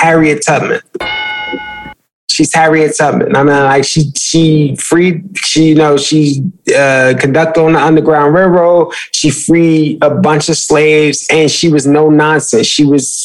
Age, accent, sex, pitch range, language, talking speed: 20-39, American, male, 145-170 Hz, English, 155 wpm